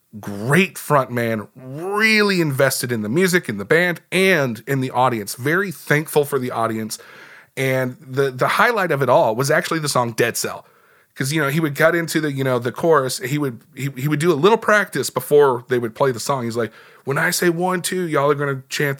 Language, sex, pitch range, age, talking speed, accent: English, male, 125-170 Hz, 30-49, 225 wpm, American